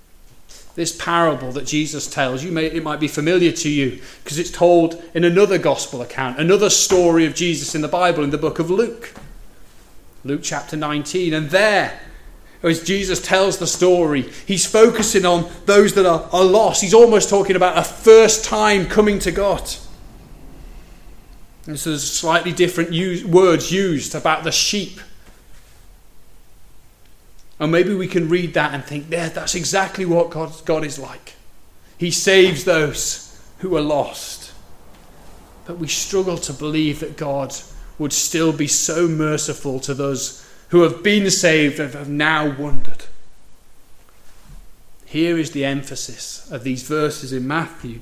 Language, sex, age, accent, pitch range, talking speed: English, male, 30-49, British, 145-180 Hz, 155 wpm